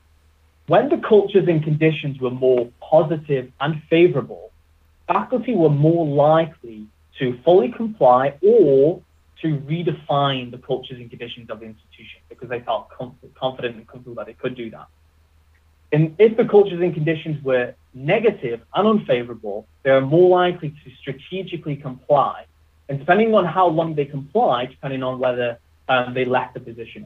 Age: 30-49